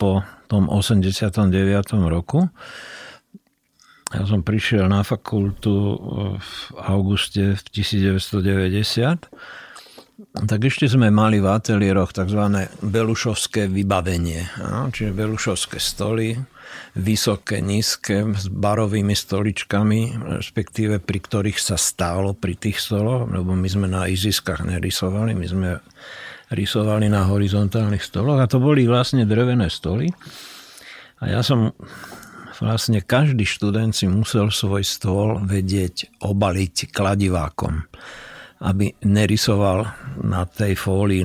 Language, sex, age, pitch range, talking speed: Slovak, male, 60-79, 95-110 Hz, 110 wpm